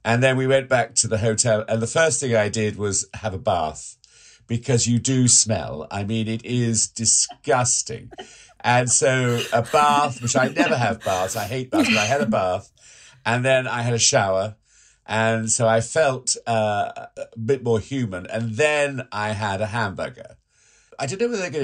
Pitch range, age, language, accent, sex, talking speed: 110-135 Hz, 50-69, English, British, male, 195 wpm